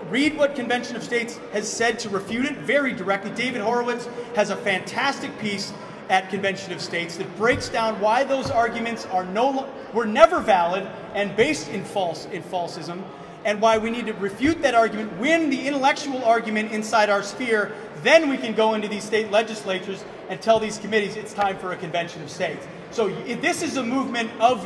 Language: English